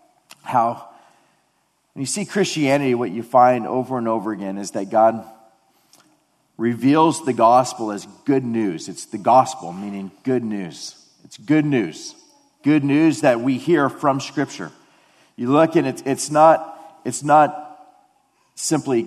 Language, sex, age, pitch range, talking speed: English, male, 40-59, 115-150 Hz, 145 wpm